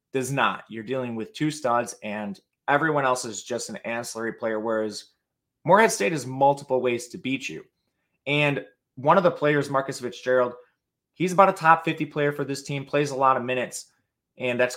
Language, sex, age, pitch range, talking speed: English, male, 20-39, 125-155 Hz, 190 wpm